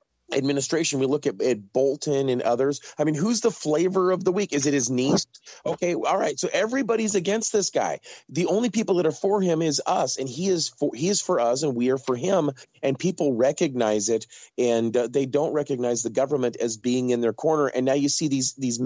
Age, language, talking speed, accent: 30-49, English, 230 wpm, American